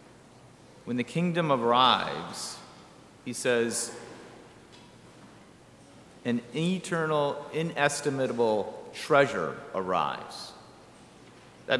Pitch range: 130-175 Hz